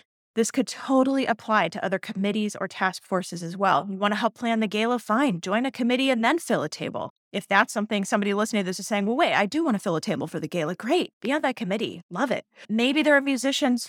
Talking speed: 260 wpm